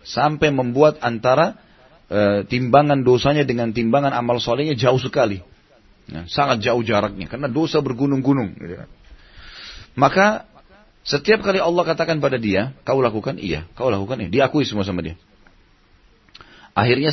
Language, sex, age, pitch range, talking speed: Indonesian, male, 30-49, 105-140 Hz, 135 wpm